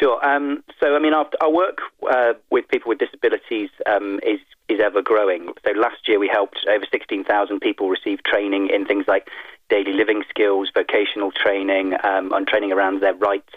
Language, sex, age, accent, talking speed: English, male, 30-49, British, 175 wpm